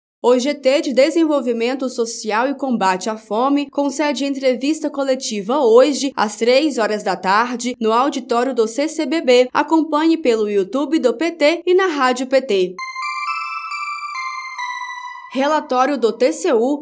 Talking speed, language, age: 120 wpm, Portuguese, 20-39